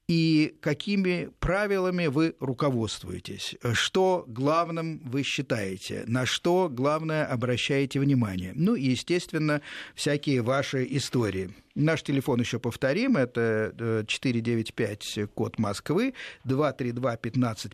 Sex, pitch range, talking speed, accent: male, 120-155 Hz, 100 wpm, native